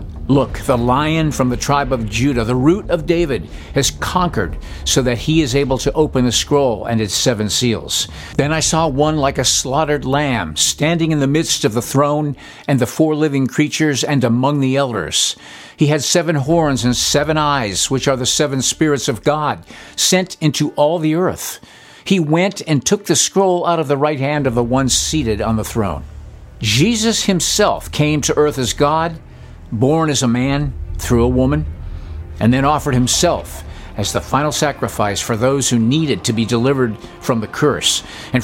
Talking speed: 190 wpm